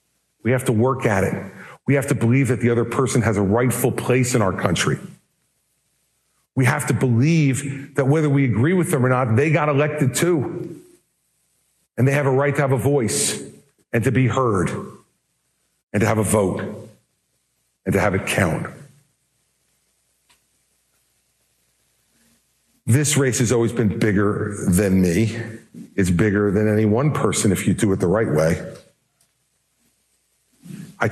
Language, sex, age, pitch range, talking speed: English, male, 50-69, 110-140 Hz, 160 wpm